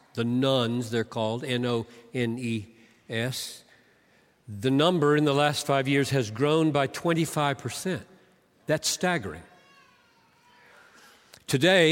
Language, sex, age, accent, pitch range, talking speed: English, male, 50-69, American, 130-165 Hz, 115 wpm